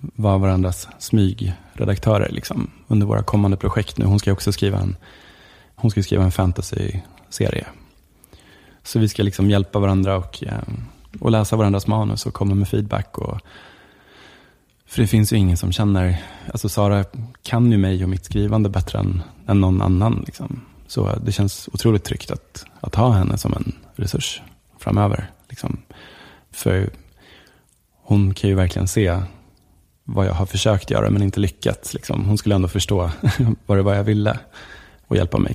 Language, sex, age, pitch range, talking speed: English, male, 20-39, 95-105 Hz, 160 wpm